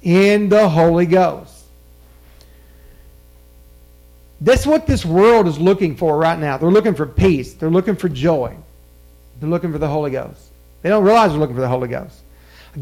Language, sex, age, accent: English, male, 50-69, American